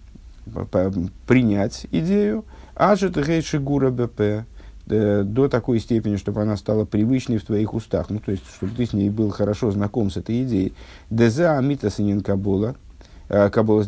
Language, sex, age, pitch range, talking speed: Russian, male, 50-69, 100-120 Hz, 145 wpm